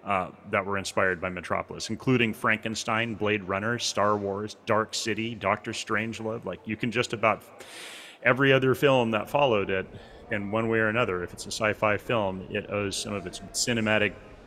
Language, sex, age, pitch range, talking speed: English, male, 30-49, 100-120 Hz, 180 wpm